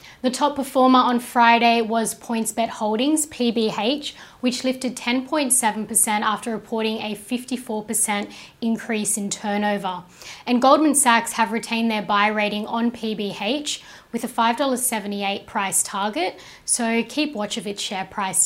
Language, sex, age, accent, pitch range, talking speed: English, female, 10-29, Australian, 215-245 Hz, 135 wpm